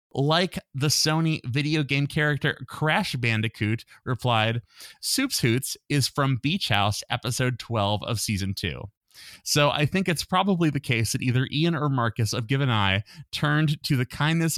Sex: male